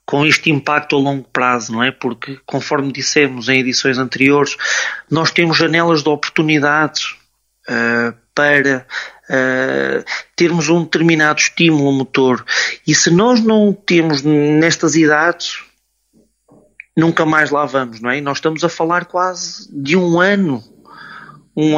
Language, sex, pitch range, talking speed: Portuguese, male, 135-165 Hz, 130 wpm